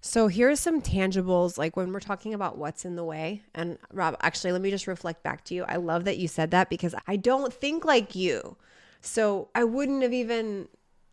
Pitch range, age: 170-215 Hz, 20-39